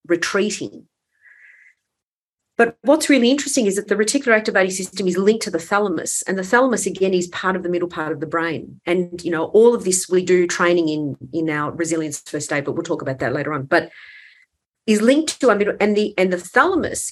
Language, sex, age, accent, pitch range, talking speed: English, female, 40-59, Australian, 175-225 Hz, 215 wpm